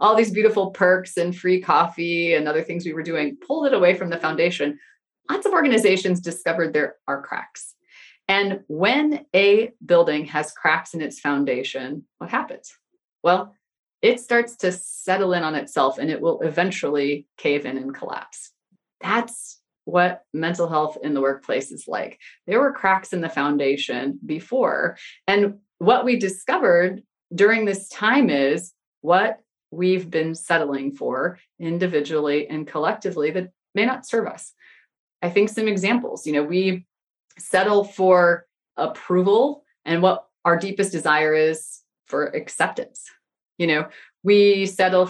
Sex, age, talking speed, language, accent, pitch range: female, 30-49, 150 wpm, English, American, 155-200 Hz